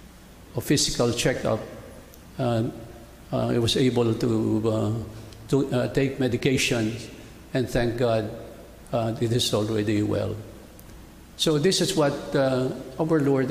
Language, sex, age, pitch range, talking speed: English, male, 50-69, 110-130 Hz, 130 wpm